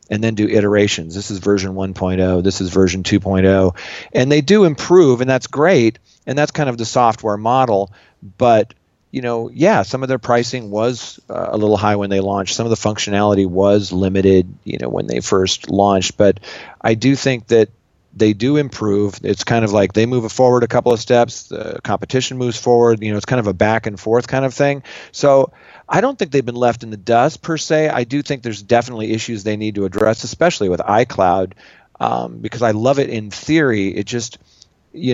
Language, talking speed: English, 210 wpm